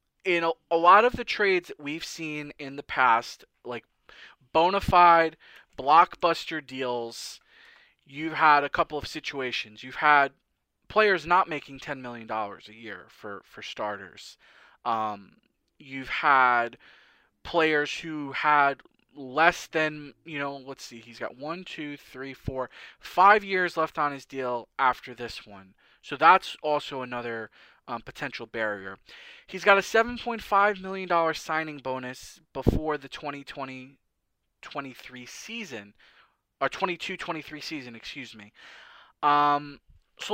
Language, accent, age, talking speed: English, American, 20-39, 135 wpm